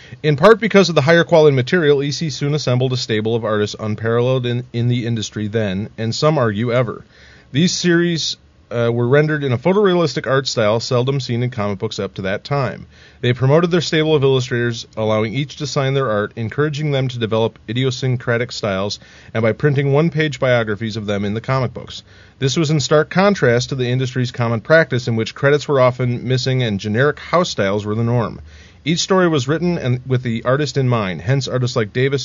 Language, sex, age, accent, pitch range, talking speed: English, male, 30-49, American, 115-145 Hz, 205 wpm